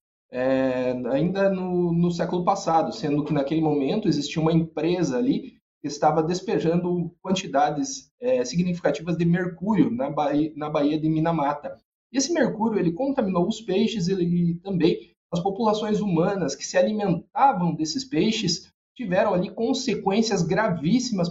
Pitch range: 155-200 Hz